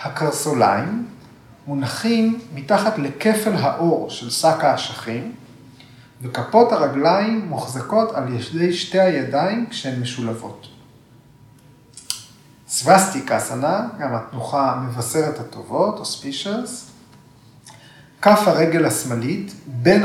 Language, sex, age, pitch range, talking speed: Hebrew, male, 40-59, 125-170 Hz, 85 wpm